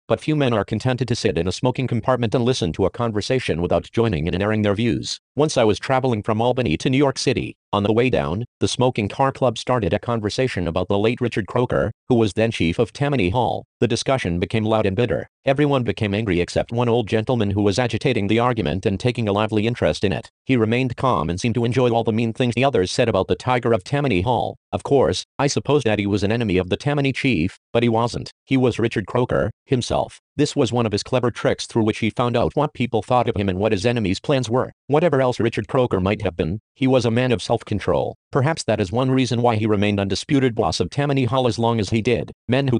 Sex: male